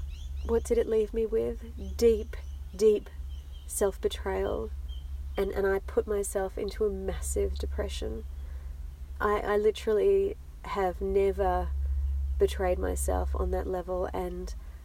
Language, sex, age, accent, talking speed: English, female, 30-49, Australian, 115 wpm